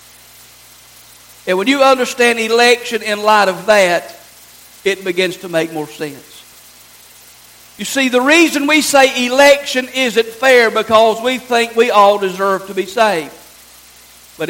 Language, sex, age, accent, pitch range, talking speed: English, male, 50-69, American, 170-250 Hz, 140 wpm